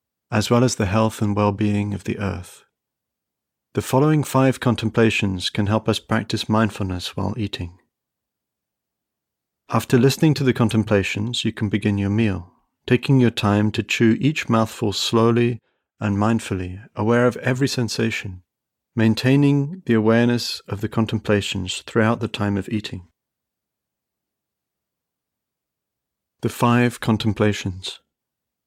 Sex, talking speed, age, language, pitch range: male, 125 wpm, 40-59, English, 100-120 Hz